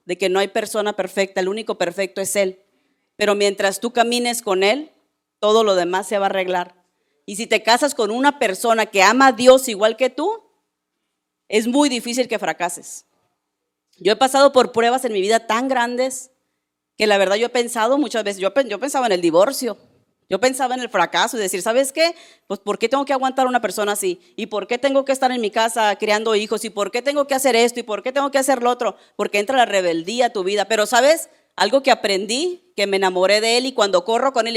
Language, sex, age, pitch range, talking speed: Spanish, female, 40-59, 195-255 Hz, 230 wpm